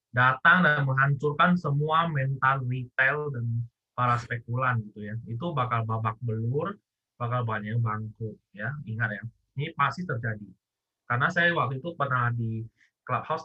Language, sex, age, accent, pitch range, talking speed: Indonesian, male, 20-39, native, 110-145 Hz, 140 wpm